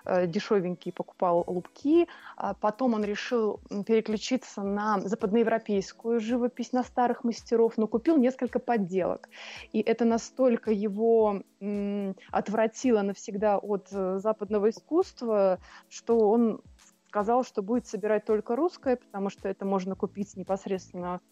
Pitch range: 195-245 Hz